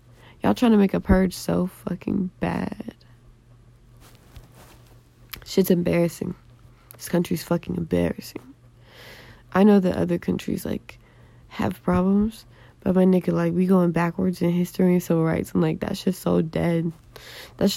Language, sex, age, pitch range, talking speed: English, female, 20-39, 120-185 Hz, 140 wpm